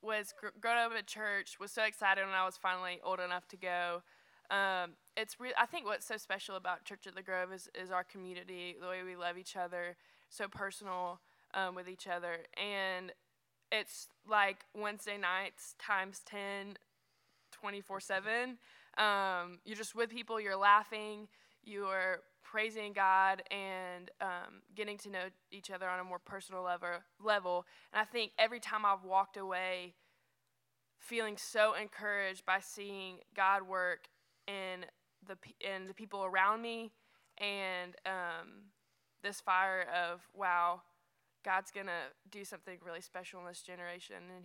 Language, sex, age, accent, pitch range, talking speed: English, female, 20-39, American, 180-205 Hz, 155 wpm